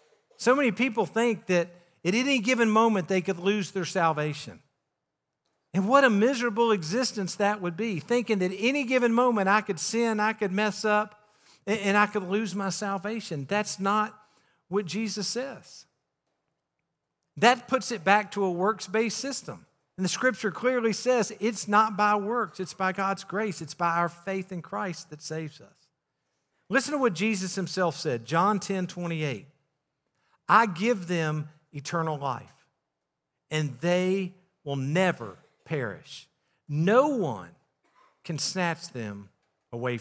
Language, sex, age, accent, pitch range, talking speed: English, male, 50-69, American, 170-220 Hz, 150 wpm